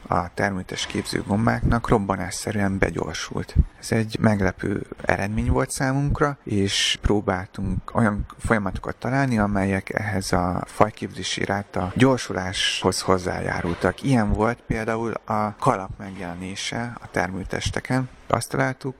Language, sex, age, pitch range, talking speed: Hungarian, male, 30-49, 95-115 Hz, 105 wpm